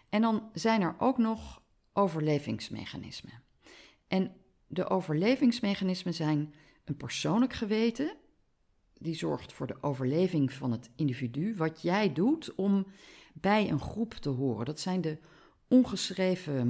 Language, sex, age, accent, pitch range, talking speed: Dutch, female, 40-59, Dutch, 135-200 Hz, 125 wpm